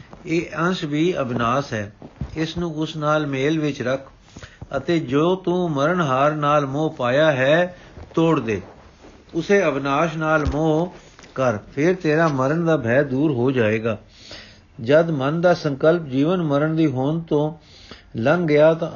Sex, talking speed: male, 150 wpm